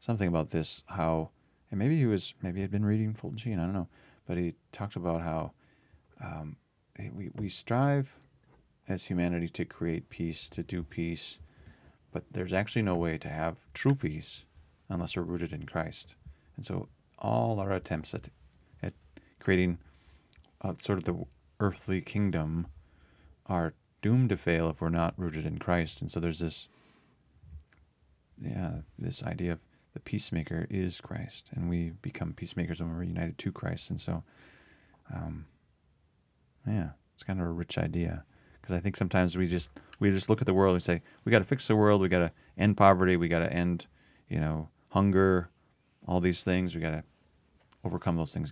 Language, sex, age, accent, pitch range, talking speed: English, male, 30-49, American, 80-95 Hz, 180 wpm